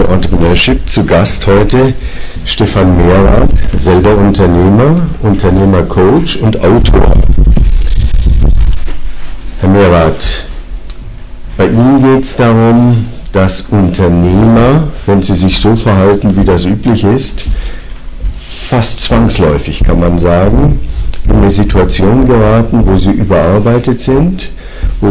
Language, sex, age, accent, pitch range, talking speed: English, male, 50-69, German, 90-115 Hz, 105 wpm